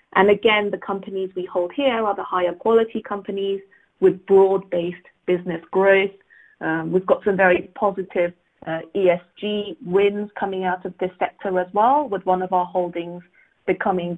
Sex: female